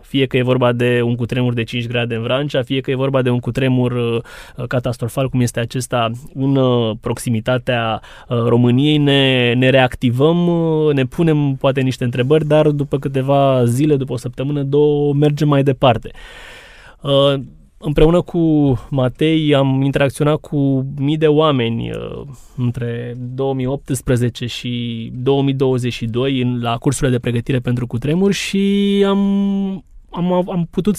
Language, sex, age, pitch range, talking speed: Romanian, male, 20-39, 125-150 Hz, 145 wpm